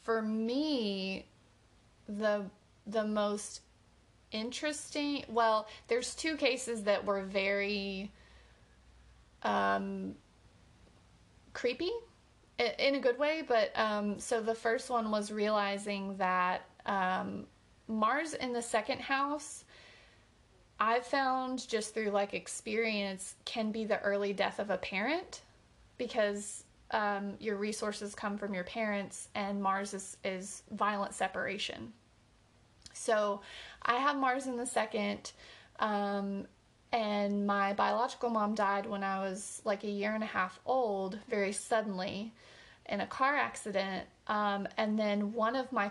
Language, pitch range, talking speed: English, 195-230 Hz, 125 wpm